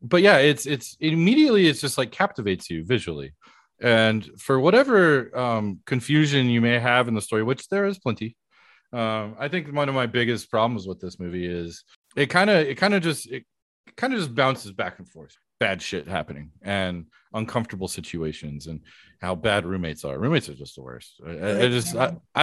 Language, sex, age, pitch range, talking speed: English, male, 30-49, 95-150 Hz, 195 wpm